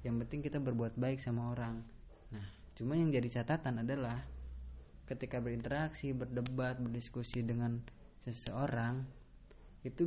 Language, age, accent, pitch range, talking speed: Indonesian, 20-39, native, 115-130 Hz, 120 wpm